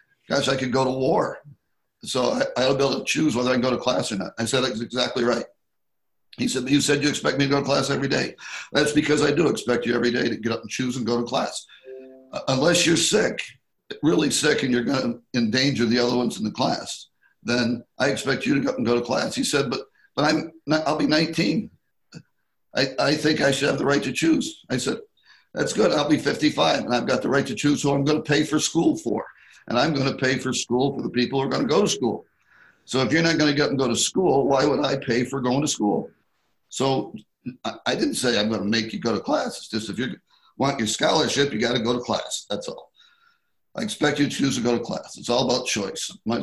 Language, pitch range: English, 120-150 Hz